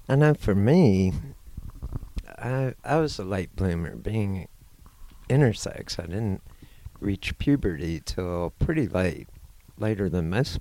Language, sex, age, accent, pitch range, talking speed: English, male, 60-79, American, 85-120 Hz, 125 wpm